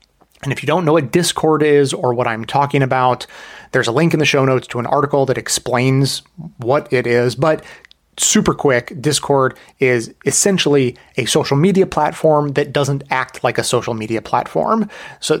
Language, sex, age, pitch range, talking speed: English, male, 30-49, 120-155 Hz, 185 wpm